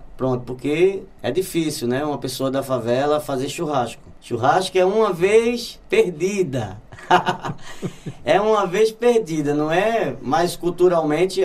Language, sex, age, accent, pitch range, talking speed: Portuguese, male, 20-39, Brazilian, 135-185 Hz, 125 wpm